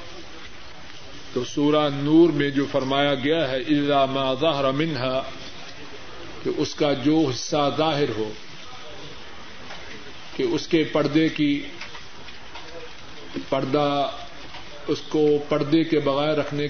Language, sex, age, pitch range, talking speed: Urdu, male, 40-59, 135-160 Hz, 105 wpm